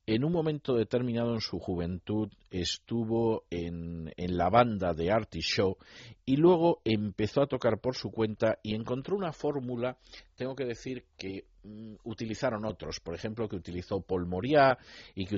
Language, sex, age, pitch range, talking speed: Spanish, male, 50-69, 95-115 Hz, 165 wpm